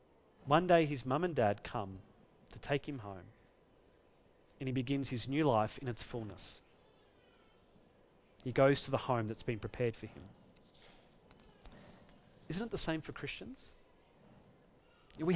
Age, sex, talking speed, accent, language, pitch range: 30-49, male, 145 wpm, Australian, English, 140-215 Hz